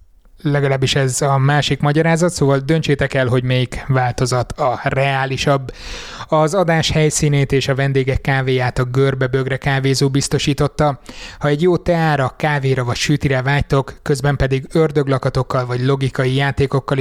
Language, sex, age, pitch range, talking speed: Hungarian, male, 20-39, 135-150 Hz, 135 wpm